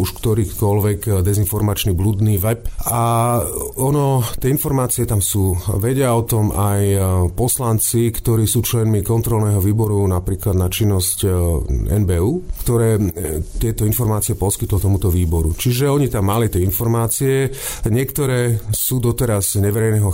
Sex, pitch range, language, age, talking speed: male, 100-120 Hz, Slovak, 30-49, 120 wpm